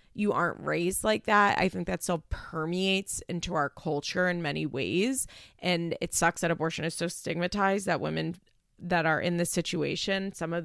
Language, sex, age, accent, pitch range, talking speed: English, female, 20-39, American, 170-210 Hz, 185 wpm